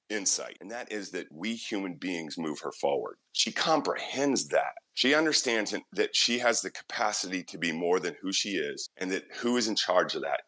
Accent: American